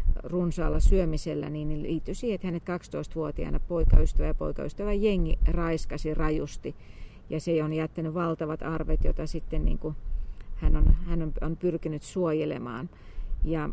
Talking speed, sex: 125 wpm, female